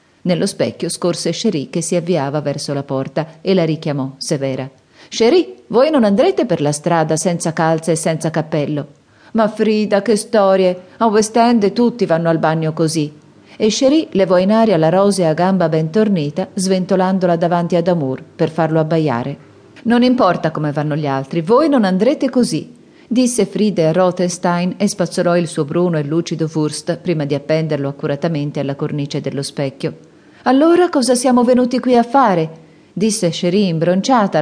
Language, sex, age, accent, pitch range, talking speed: Italian, female, 40-59, native, 155-200 Hz, 165 wpm